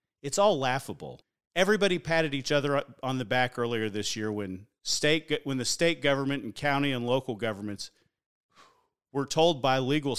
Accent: American